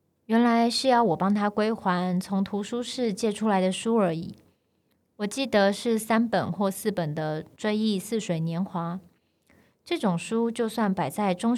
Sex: female